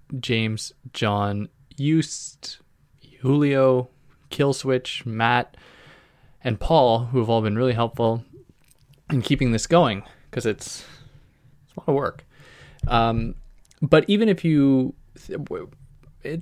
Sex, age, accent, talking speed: male, 20-39, American, 115 wpm